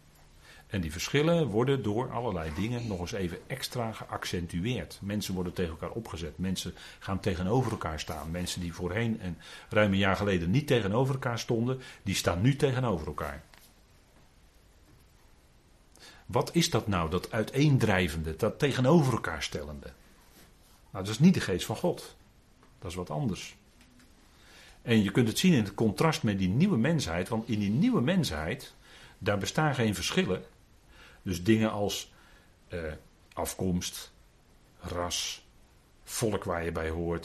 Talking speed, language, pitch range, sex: 150 wpm, Dutch, 90-115 Hz, male